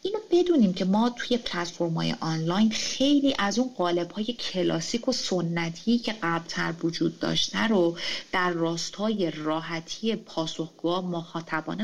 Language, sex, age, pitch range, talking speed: Persian, female, 30-49, 170-235 Hz, 125 wpm